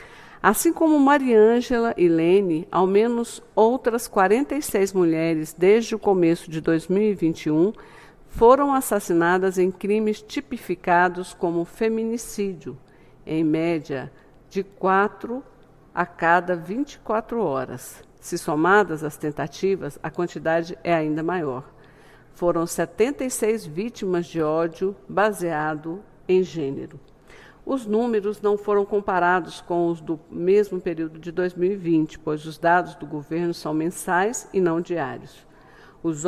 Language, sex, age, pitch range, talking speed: Portuguese, female, 50-69, 165-210 Hz, 115 wpm